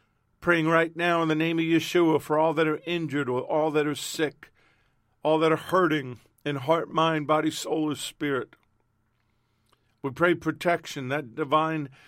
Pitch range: 130-160 Hz